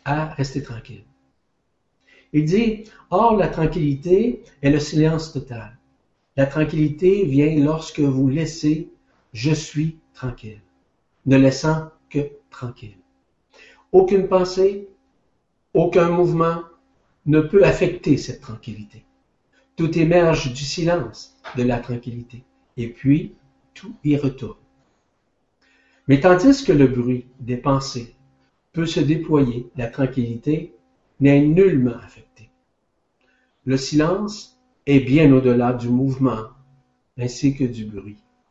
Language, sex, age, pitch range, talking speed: French, male, 60-79, 120-155 Hz, 115 wpm